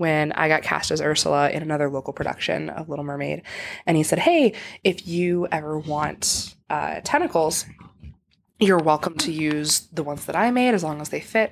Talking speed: 195 wpm